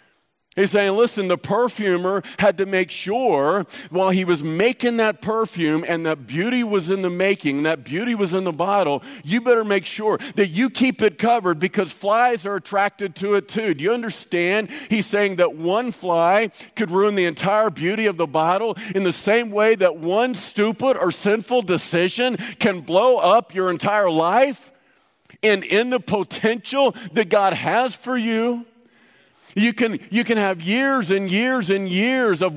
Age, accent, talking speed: 50-69, American, 175 wpm